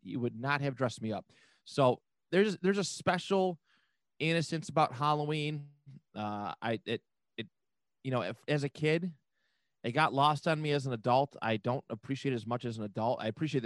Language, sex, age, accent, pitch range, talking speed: English, male, 30-49, American, 115-150 Hz, 195 wpm